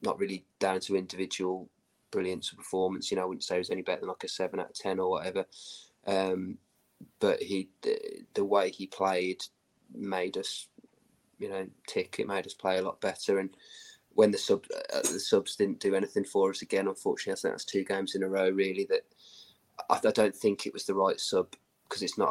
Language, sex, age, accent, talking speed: English, male, 20-39, British, 220 wpm